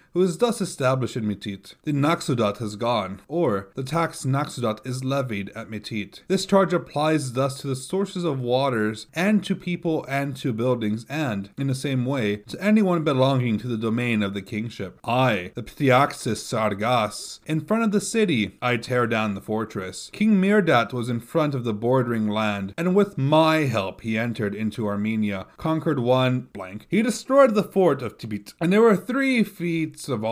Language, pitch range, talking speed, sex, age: English, 110-170 Hz, 185 wpm, male, 30-49